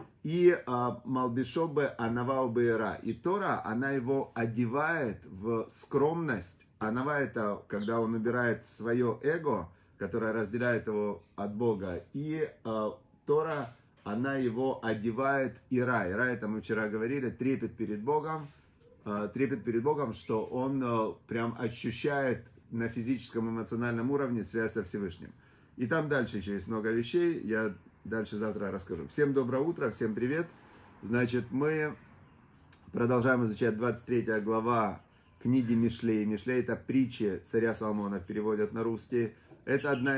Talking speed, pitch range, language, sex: 130 wpm, 110-130 Hz, Russian, male